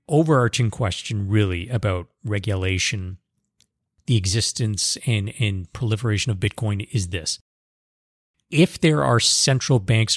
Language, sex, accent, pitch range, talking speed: English, male, American, 95-120 Hz, 110 wpm